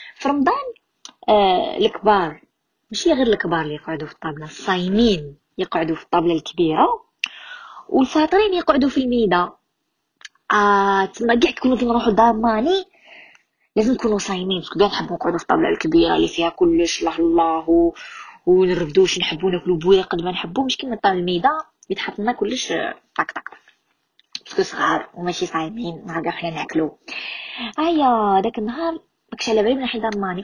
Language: Arabic